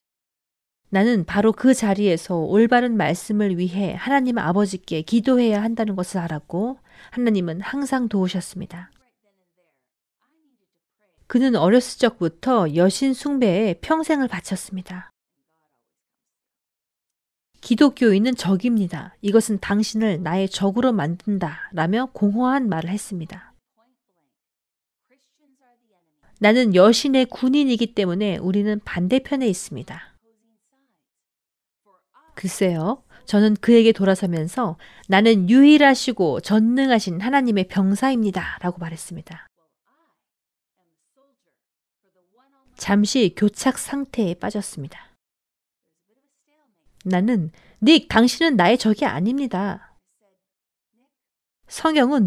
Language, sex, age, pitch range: Korean, female, 40-59, 185-250 Hz